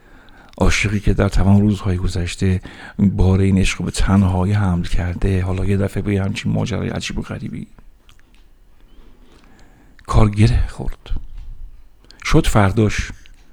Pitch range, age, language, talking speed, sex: 85-110 Hz, 60-79, Persian, 120 wpm, male